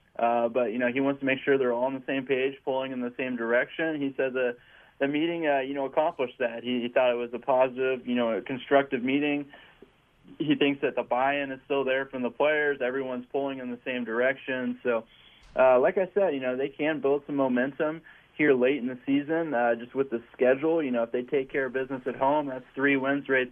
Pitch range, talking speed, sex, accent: 120-140 Hz, 240 wpm, male, American